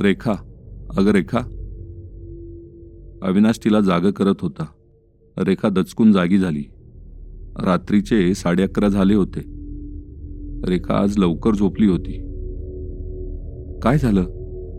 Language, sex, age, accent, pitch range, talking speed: Marathi, male, 40-59, native, 85-95 Hz, 85 wpm